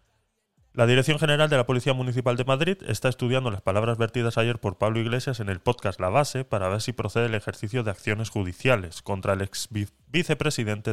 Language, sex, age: Spanish, male, 20-39